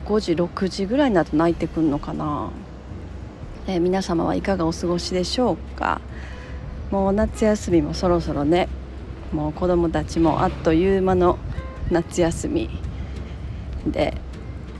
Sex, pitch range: female, 145-190 Hz